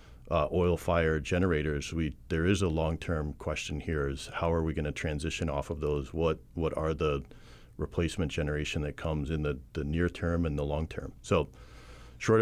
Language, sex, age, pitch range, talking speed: English, male, 40-59, 75-90 Hz, 195 wpm